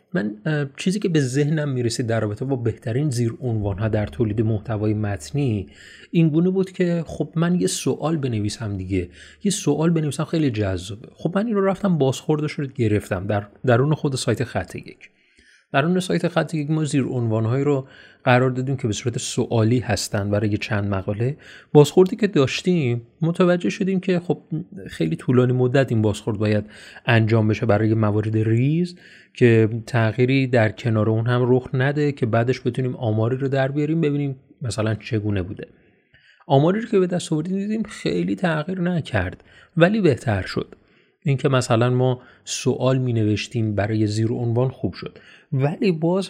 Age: 30-49